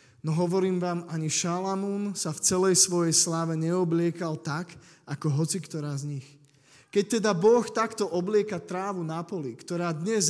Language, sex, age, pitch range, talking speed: Slovak, male, 20-39, 145-185 Hz, 150 wpm